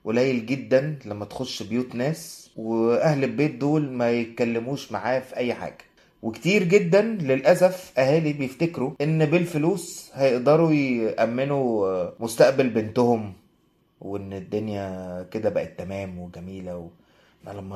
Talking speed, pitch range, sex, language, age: 110 wpm, 110-150 Hz, male, Arabic, 20-39